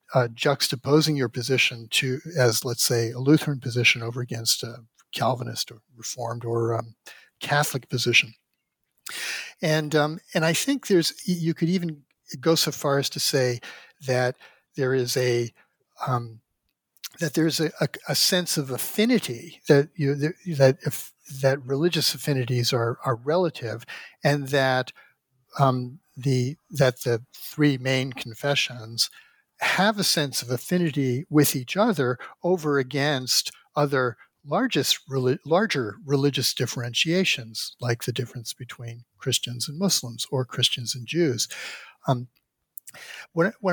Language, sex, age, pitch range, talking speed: English, male, 60-79, 125-155 Hz, 130 wpm